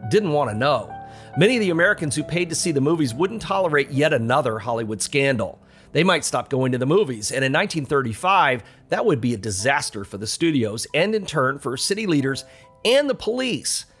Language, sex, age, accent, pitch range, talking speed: English, male, 40-59, American, 125-175 Hz, 200 wpm